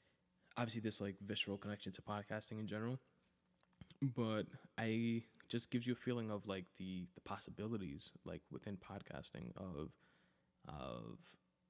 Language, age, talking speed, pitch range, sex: English, 20-39, 135 wpm, 95-110 Hz, male